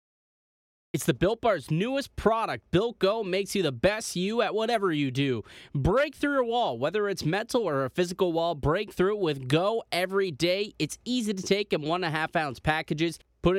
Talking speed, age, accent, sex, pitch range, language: 210 wpm, 20-39, American, male, 150-195 Hz, English